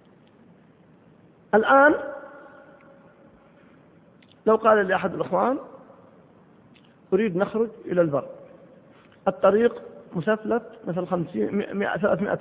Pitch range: 175-225 Hz